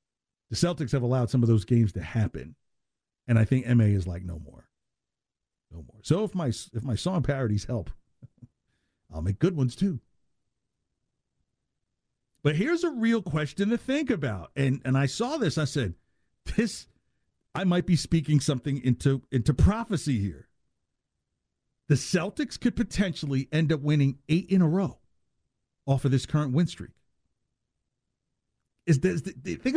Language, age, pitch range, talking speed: English, 50-69, 120-175 Hz, 155 wpm